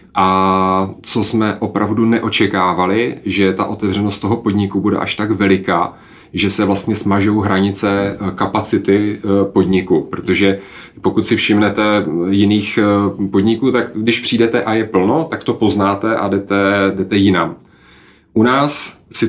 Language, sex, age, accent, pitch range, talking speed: Czech, male, 30-49, native, 95-110 Hz, 135 wpm